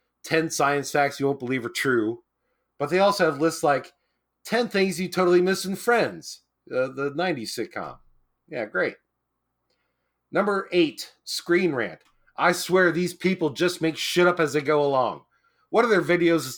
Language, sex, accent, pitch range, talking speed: English, male, American, 140-190 Hz, 175 wpm